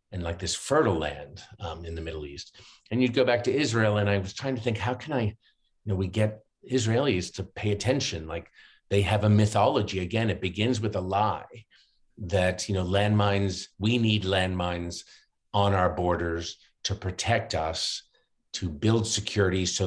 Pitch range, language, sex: 90-105 Hz, English, male